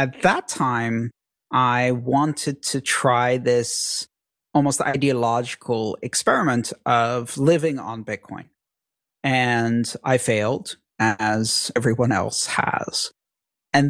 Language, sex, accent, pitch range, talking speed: English, male, American, 120-145 Hz, 100 wpm